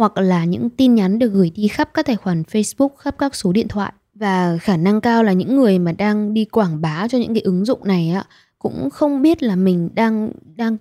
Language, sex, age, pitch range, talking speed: Vietnamese, female, 20-39, 180-230 Hz, 245 wpm